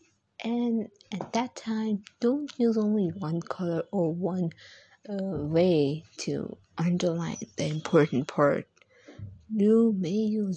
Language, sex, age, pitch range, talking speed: Hindi, female, 20-39, 160-210 Hz, 120 wpm